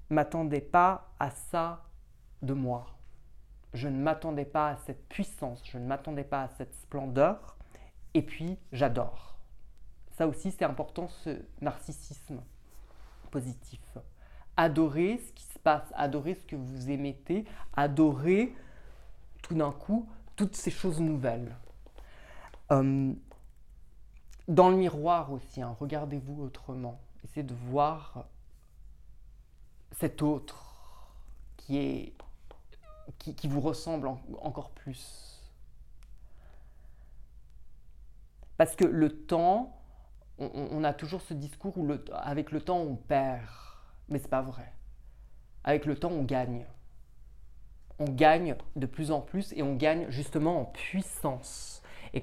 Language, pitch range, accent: French, 120-160 Hz, French